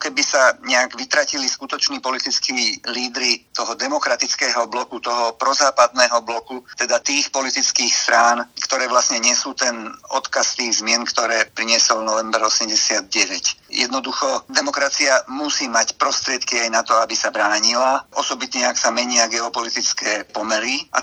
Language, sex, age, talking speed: Slovak, male, 50-69, 135 wpm